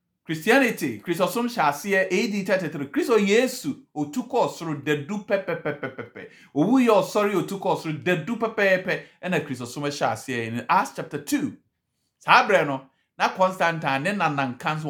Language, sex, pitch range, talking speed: English, male, 140-210 Hz, 135 wpm